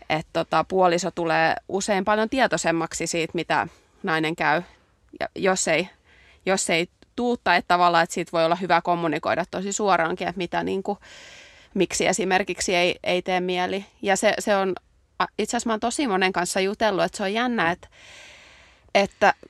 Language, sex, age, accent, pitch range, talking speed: Finnish, female, 20-39, native, 175-205 Hz, 160 wpm